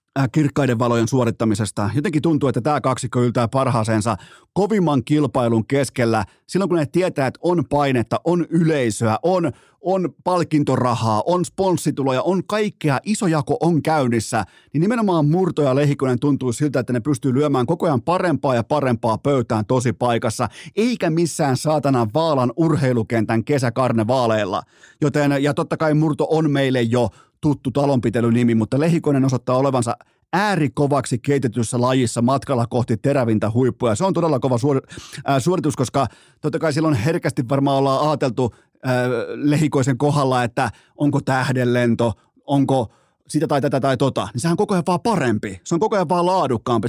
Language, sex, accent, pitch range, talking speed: Finnish, male, native, 125-160 Hz, 150 wpm